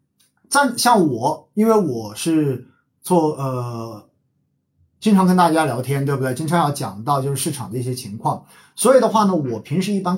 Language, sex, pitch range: Chinese, male, 125-180 Hz